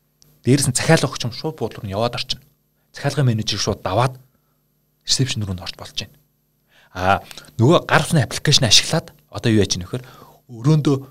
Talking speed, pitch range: 155 wpm, 110-150 Hz